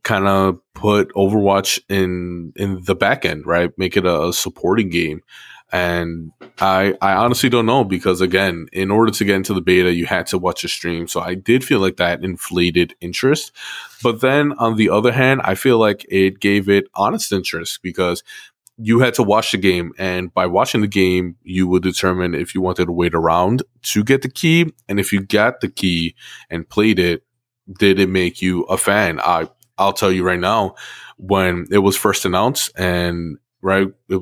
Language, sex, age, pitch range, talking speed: English, male, 20-39, 90-105 Hz, 200 wpm